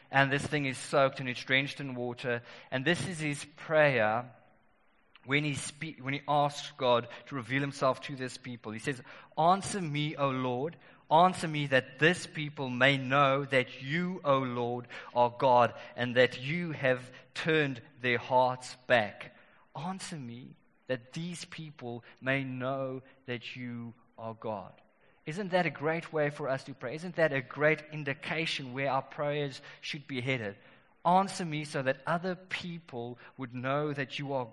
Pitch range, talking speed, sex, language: 130-155 Hz, 170 wpm, male, English